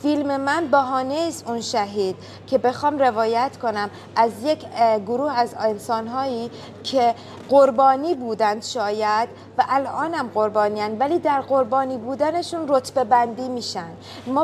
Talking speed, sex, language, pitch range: 130 wpm, female, Persian, 220-270 Hz